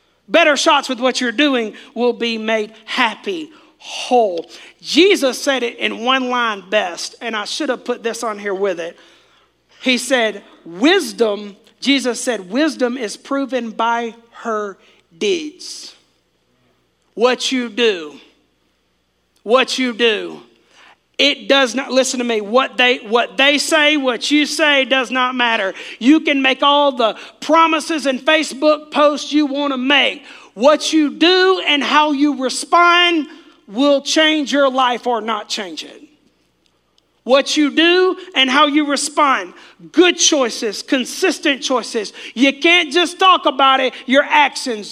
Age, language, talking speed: 50-69, English, 145 wpm